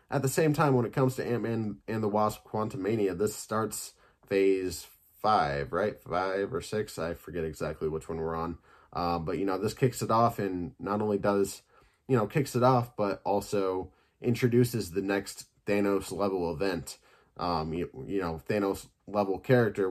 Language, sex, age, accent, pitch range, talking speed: English, male, 20-39, American, 95-115 Hz, 175 wpm